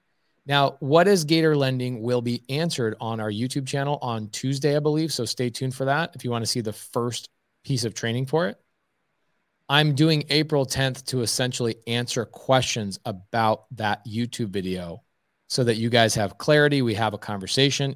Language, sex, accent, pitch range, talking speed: English, male, American, 115-140 Hz, 185 wpm